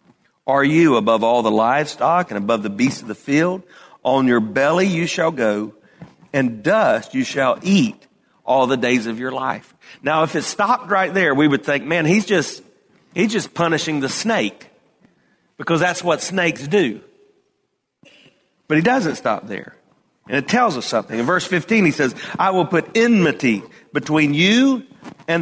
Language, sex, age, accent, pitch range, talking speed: English, male, 40-59, American, 130-190 Hz, 175 wpm